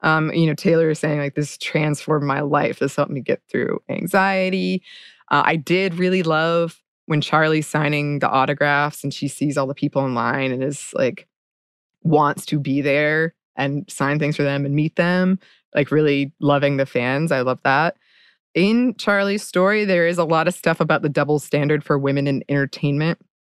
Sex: female